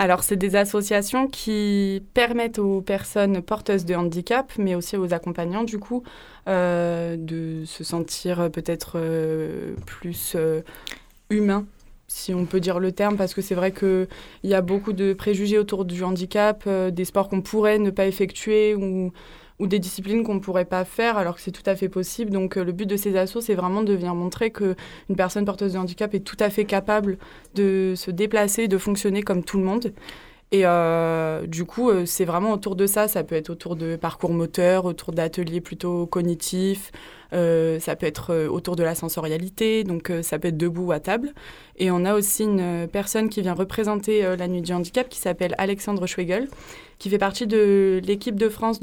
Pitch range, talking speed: 175-205 Hz, 200 wpm